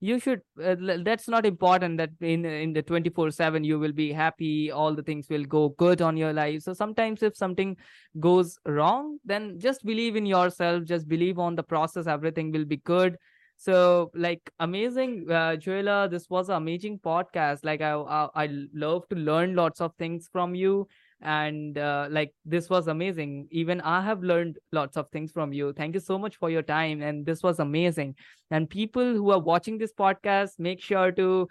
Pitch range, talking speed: 160-190 Hz, 195 wpm